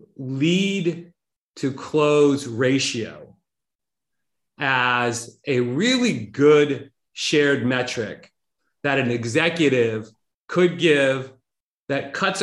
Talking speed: 80 wpm